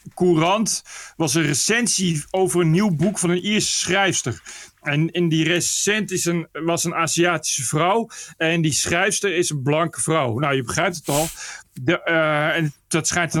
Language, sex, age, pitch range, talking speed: Dutch, male, 40-59, 155-185 Hz, 155 wpm